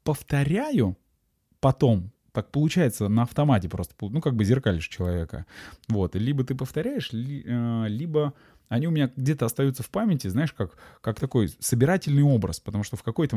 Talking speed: 155 wpm